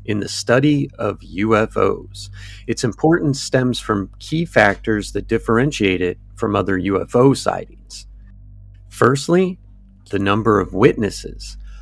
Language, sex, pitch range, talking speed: English, male, 95-120 Hz, 115 wpm